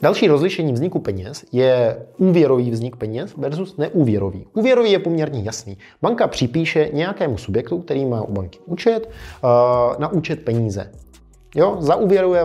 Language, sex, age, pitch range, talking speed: Czech, male, 20-39, 120-160 Hz, 135 wpm